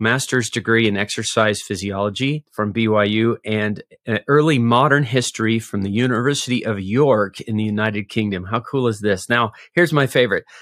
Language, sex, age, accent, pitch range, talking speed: English, male, 30-49, American, 105-130 Hz, 160 wpm